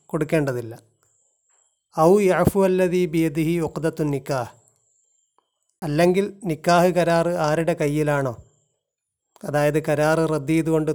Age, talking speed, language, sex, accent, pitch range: 30-49, 70 wpm, Malayalam, male, native, 140-165 Hz